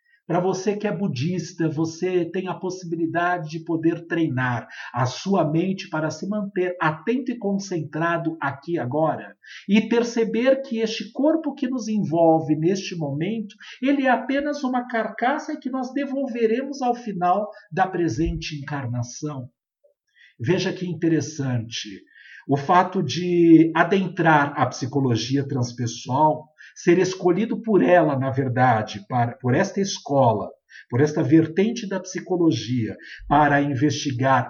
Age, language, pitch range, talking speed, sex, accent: 50-69, Portuguese, 140-200 Hz, 125 wpm, male, Brazilian